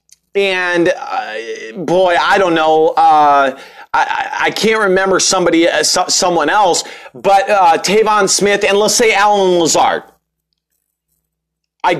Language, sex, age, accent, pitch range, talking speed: English, male, 30-49, American, 185-255 Hz, 125 wpm